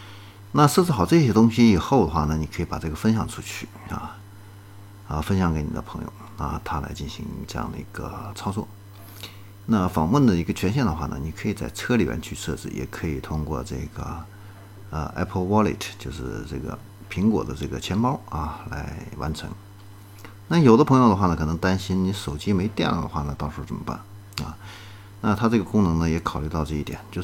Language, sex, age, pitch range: Chinese, male, 50-69, 80-105 Hz